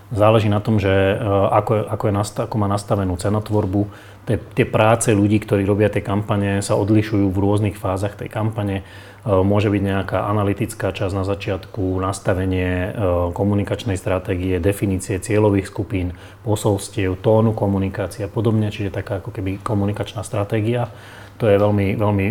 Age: 30-49